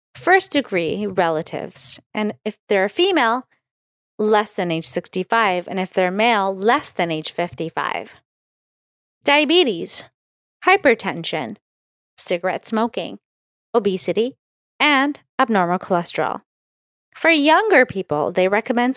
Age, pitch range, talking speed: 20-39, 180-280 Hz, 105 wpm